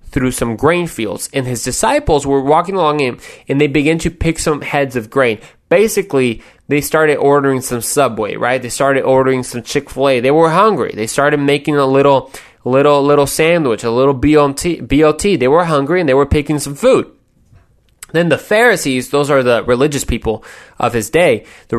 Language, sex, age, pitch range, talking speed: English, male, 20-39, 135-195 Hz, 185 wpm